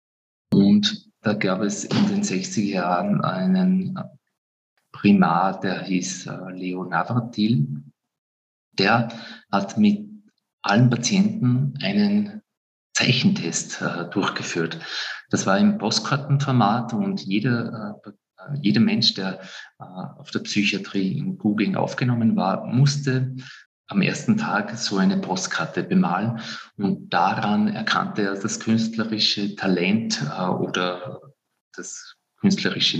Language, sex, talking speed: German, male, 105 wpm